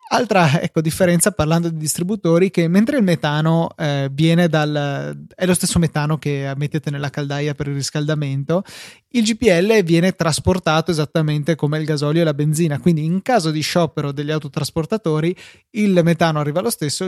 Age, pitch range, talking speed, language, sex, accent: 20-39, 145-175 Hz, 165 wpm, Italian, male, native